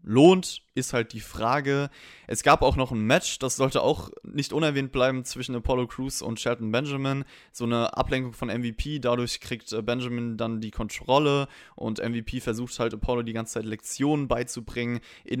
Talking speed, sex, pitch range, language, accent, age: 175 wpm, male, 115-140 Hz, German, German, 20-39